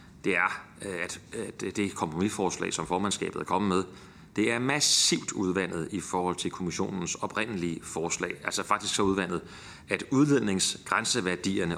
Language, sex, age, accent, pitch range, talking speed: Danish, male, 30-49, native, 90-110 Hz, 130 wpm